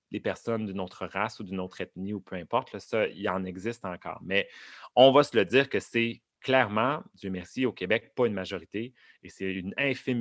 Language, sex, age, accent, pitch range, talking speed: French, male, 30-49, Canadian, 100-135 Hz, 215 wpm